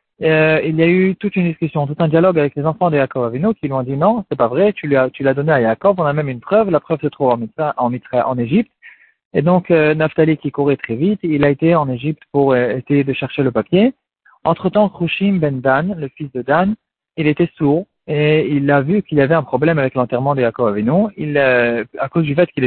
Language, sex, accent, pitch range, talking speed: French, male, French, 130-180 Hz, 260 wpm